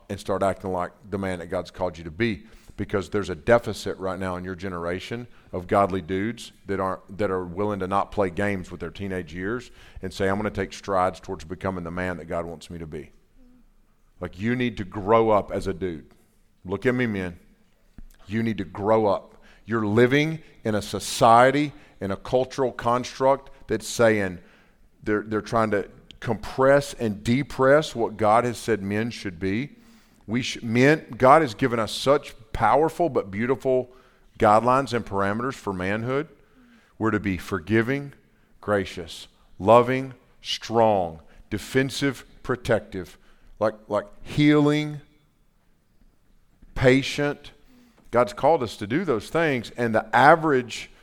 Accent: American